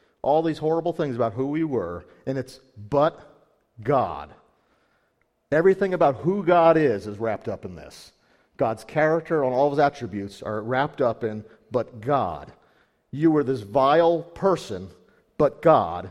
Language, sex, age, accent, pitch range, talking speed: English, male, 50-69, American, 115-150 Hz, 155 wpm